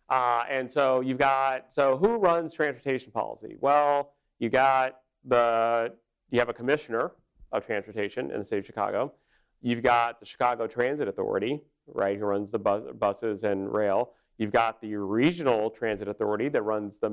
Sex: male